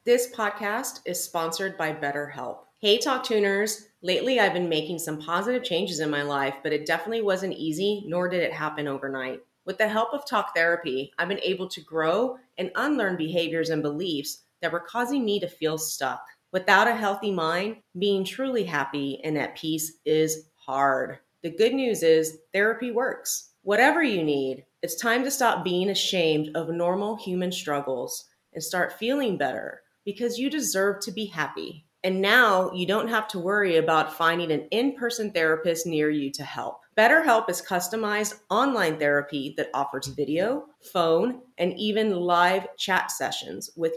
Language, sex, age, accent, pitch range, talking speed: English, female, 30-49, American, 160-215 Hz, 170 wpm